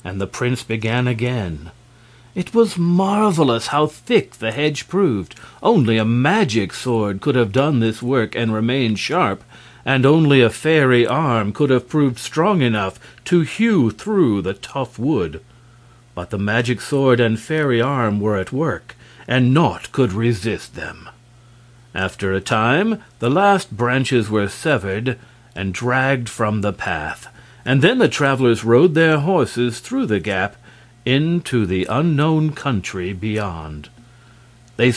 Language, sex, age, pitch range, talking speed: English, male, 50-69, 115-150 Hz, 145 wpm